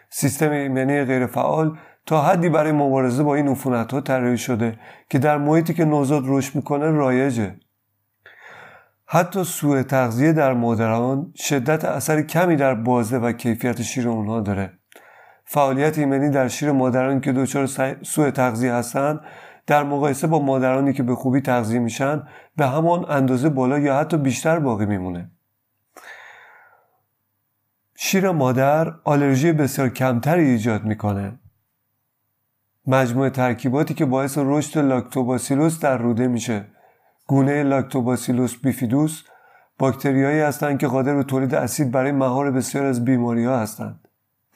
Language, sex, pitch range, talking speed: Persian, male, 125-150 Hz, 130 wpm